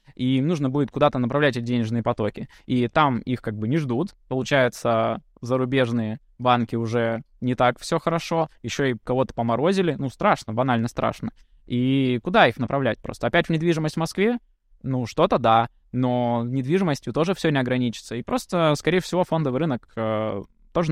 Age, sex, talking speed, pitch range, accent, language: 20-39, male, 165 wpm, 120-150 Hz, native, Russian